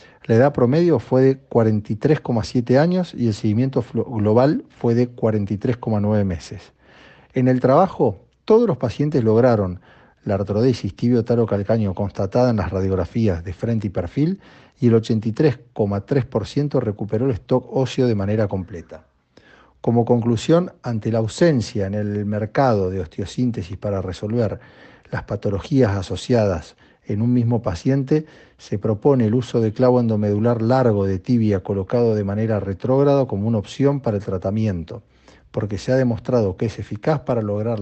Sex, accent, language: male, Argentinian, Spanish